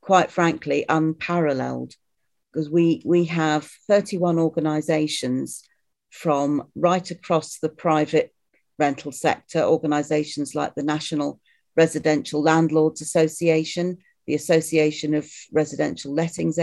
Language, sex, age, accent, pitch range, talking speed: English, female, 40-59, British, 150-170 Hz, 100 wpm